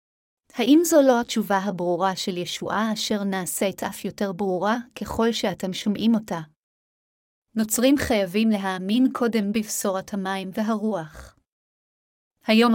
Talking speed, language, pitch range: 115 wpm, Hebrew, 195-225 Hz